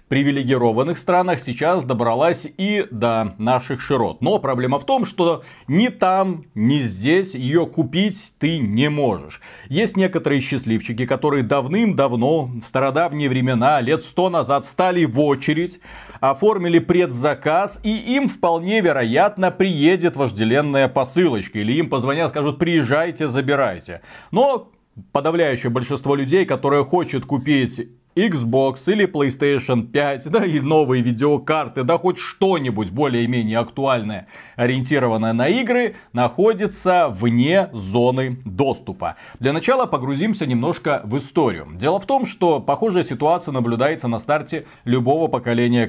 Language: Russian